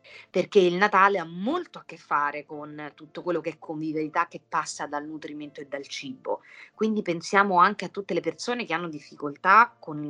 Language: Italian